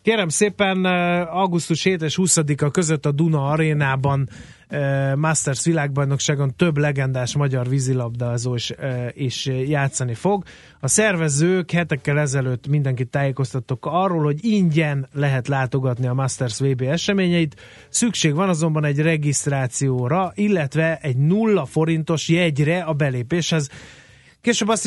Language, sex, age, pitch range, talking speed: Hungarian, male, 30-49, 135-175 Hz, 115 wpm